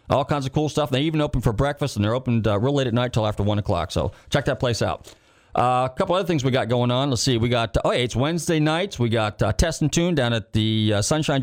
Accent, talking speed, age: American, 295 wpm, 30-49